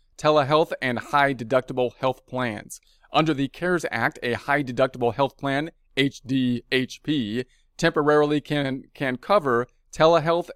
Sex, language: male, English